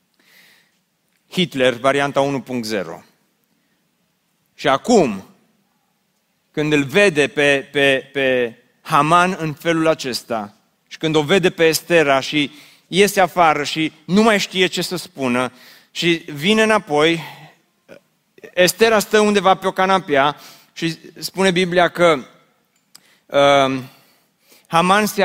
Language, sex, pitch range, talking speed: Romanian, male, 160-205 Hz, 125 wpm